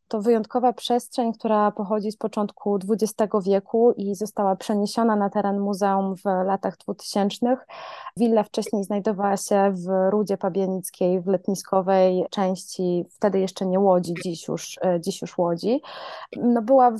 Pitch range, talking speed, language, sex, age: 185-215 Hz, 130 wpm, Polish, female, 20-39